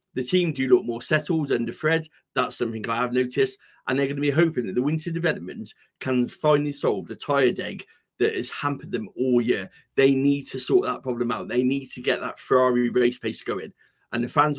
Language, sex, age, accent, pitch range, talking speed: English, male, 30-49, British, 120-150 Hz, 220 wpm